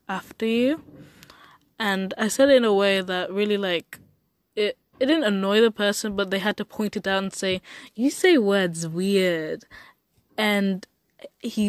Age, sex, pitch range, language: 10-29, female, 180-225 Hz, English